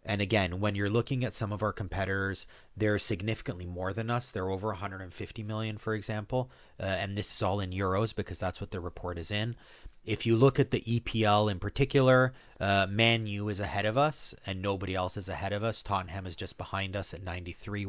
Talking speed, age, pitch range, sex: 215 wpm, 30-49, 90-110 Hz, male